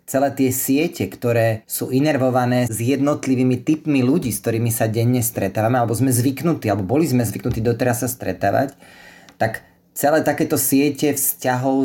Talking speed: 150 wpm